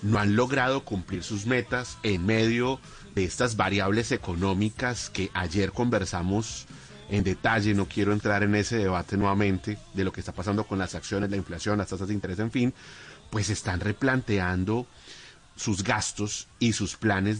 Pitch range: 95-115 Hz